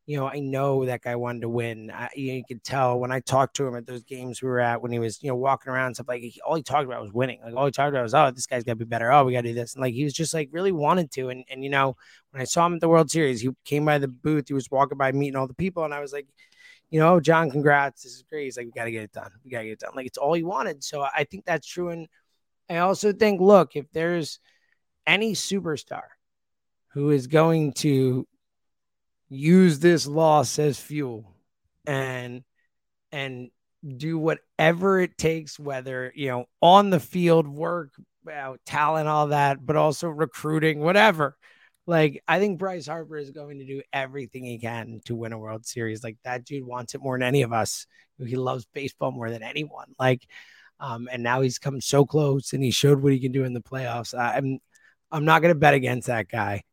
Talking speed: 240 wpm